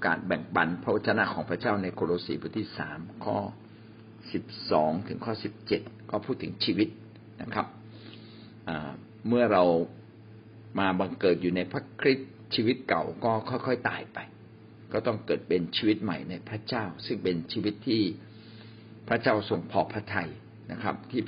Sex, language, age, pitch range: male, Thai, 60-79, 95-110 Hz